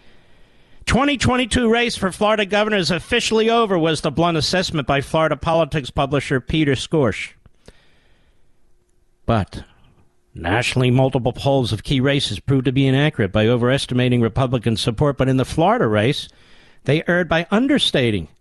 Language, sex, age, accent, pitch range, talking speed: English, male, 50-69, American, 125-160 Hz, 135 wpm